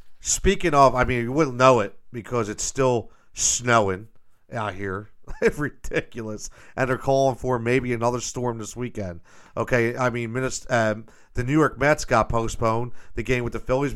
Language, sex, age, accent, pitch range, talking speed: English, male, 40-59, American, 100-130 Hz, 170 wpm